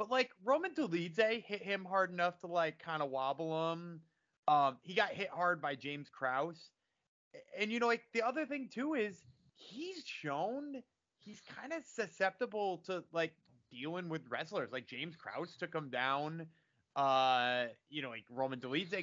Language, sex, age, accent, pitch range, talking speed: English, male, 30-49, American, 140-210 Hz, 170 wpm